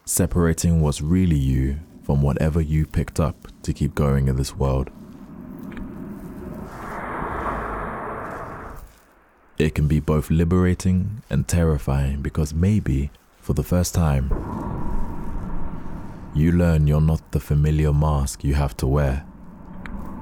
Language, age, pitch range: English, 20-39, 70-85 Hz